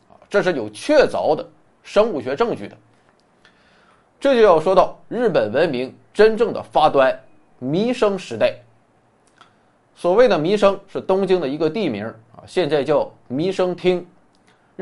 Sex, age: male, 20-39